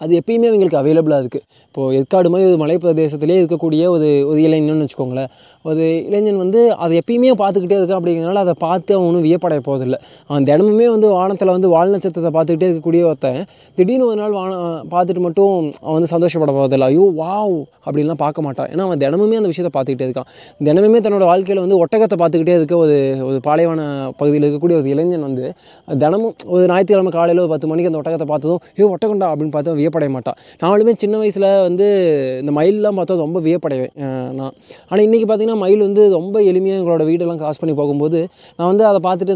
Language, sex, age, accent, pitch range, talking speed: Tamil, male, 20-39, native, 150-195 Hz, 175 wpm